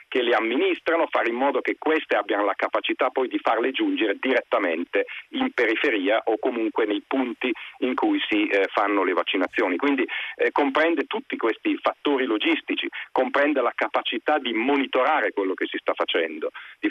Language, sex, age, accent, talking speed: Italian, male, 50-69, native, 165 wpm